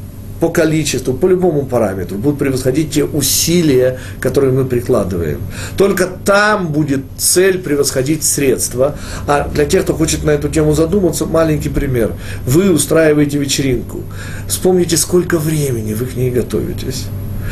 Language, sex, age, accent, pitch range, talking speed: Russian, male, 40-59, native, 100-155 Hz, 135 wpm